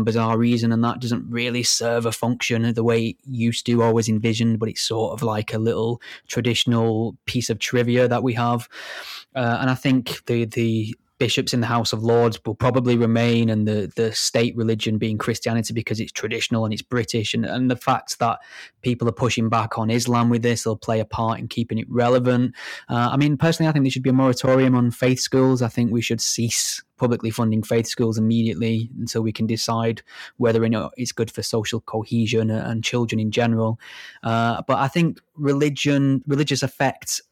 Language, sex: English, male